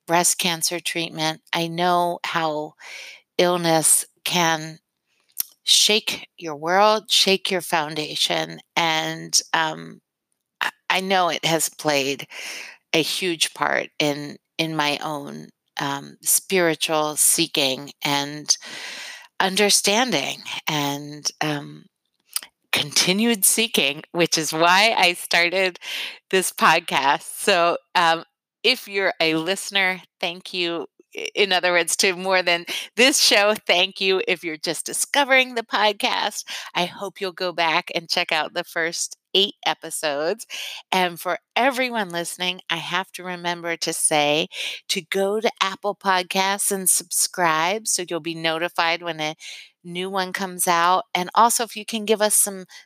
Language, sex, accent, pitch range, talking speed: English, female, American, 160-190 Hz, 130 wpm